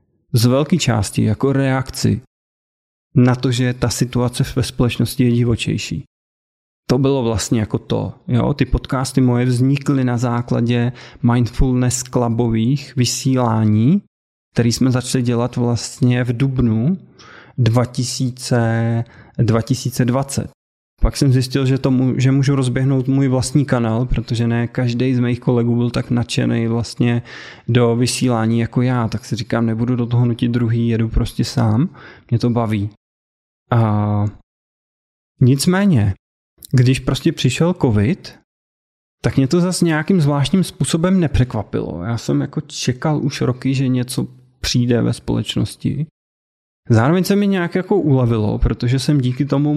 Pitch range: 115-135 Hz